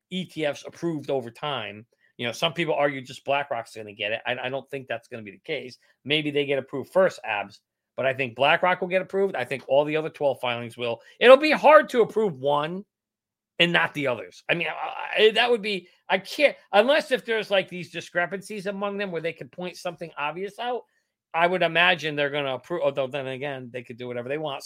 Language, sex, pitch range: English, male, 130-180 Hz